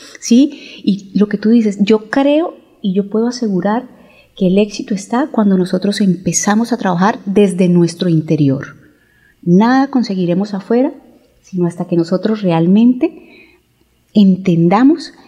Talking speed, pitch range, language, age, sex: 130 wpm, 185-225 Hz, Spanish, 30-49, female